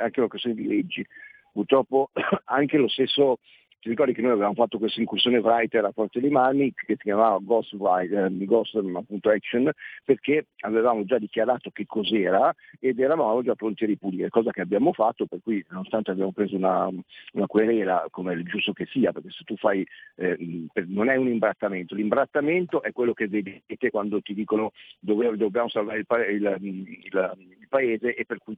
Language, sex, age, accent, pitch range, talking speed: Italian, male, 50-69, native, 100-120 Hz, 180 wpm